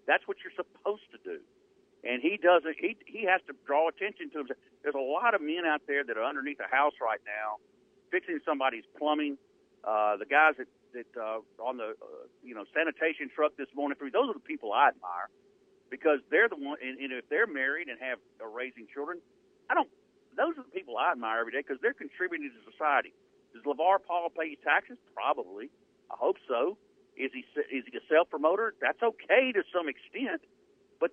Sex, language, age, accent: male, English, 50-69, American